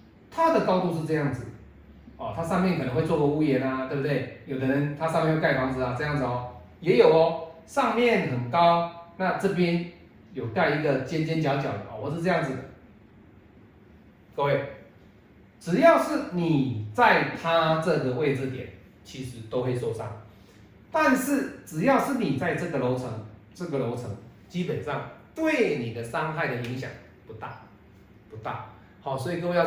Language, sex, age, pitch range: Chinese, male, 30-49, 115-160 Hz